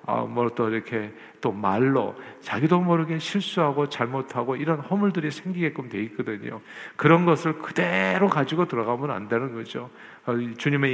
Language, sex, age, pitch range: Korean, male, 50-69, 120-155 Hz